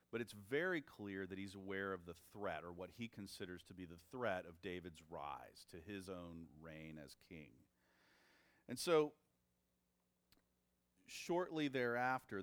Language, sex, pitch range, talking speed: English, male, 90-120 Hz, 150 wpm